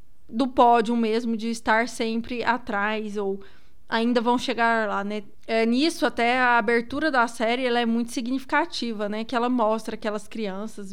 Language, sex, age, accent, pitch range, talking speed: Portuguese, female, 20-39, Brazilian, 215-245 Hz, 165 wpm